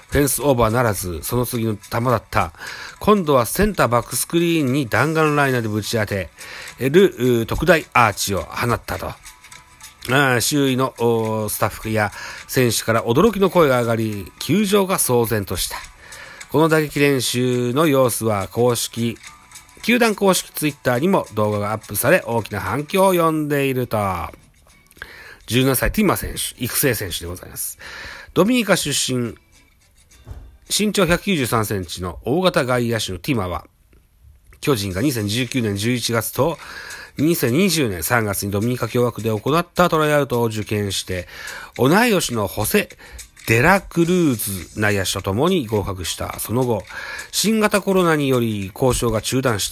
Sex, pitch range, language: male, 105-155 Hz, Japanese